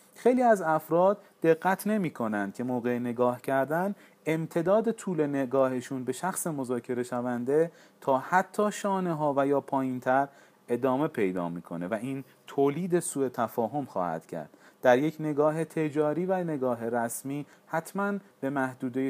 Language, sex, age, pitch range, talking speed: Persian, male, 40-59, 115-155 Hz, 140 wpm